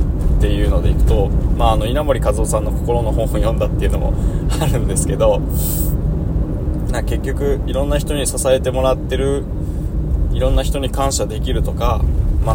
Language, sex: Japanese, male